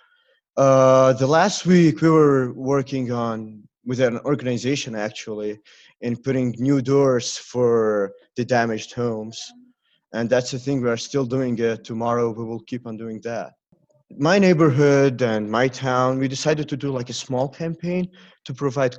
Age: 30-49